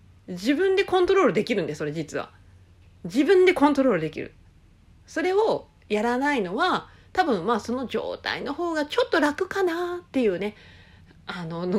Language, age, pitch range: Japanese, 40-59, 190-275 Hz